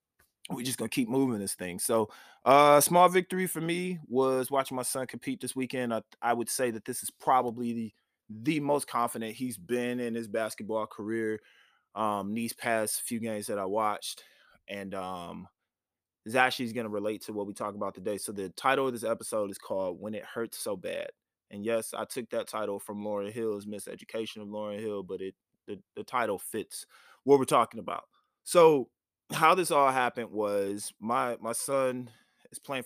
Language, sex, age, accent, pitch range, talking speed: English, male, 20-39, American, 100-125 Hz, 190 wpm